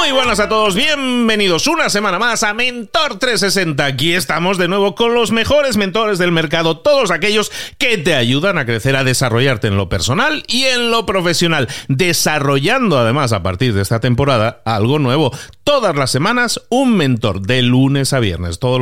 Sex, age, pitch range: male, 40-59, 120-200 Hz